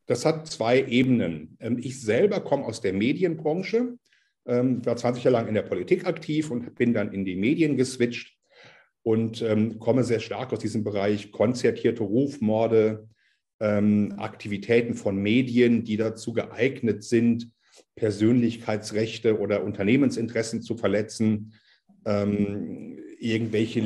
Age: 50-69